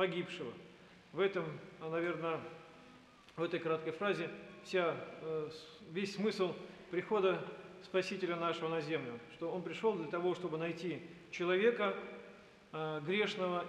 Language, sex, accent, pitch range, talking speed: Russian, male, native, 165-195 Hz, 110 wpm